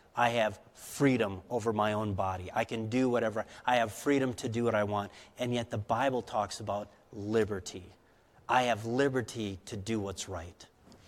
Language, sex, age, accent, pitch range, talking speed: English, male, 40-59, American, 115-160 Hz, 180 wpm